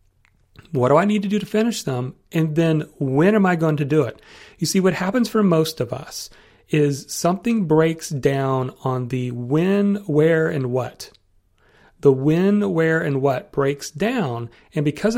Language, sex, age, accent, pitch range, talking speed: English, male, 40-59, American, 135-190 Hz, 180 wpm